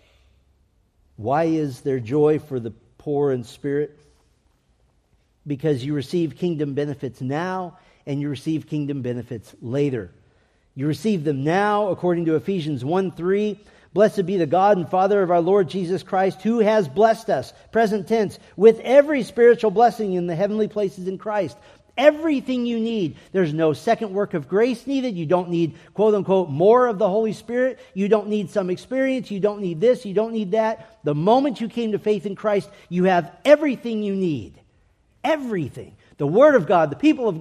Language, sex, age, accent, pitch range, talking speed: English, male, 50-69, American, 140-210 Hz, 175 wpm